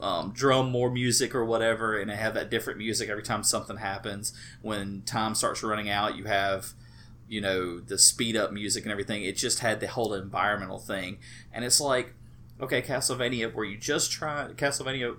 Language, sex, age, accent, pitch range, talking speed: English, male, 30-49, American, 105-125 Hz, 185 wpm